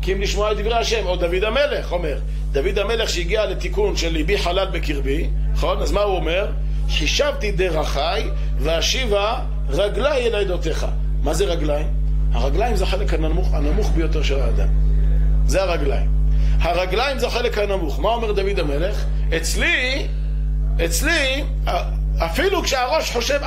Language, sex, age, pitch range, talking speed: Hebrew, male, 50-69, 150-230 Hz, 140 wpm